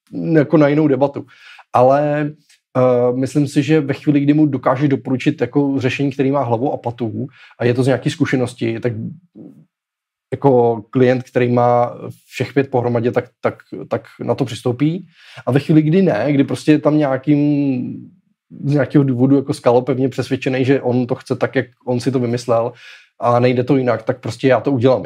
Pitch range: 125-145 Hz